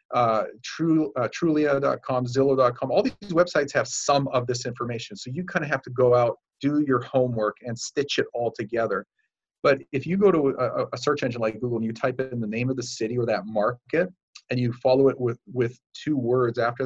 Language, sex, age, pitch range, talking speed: English, male, 40-59, 115-140 Hz, 215 wpm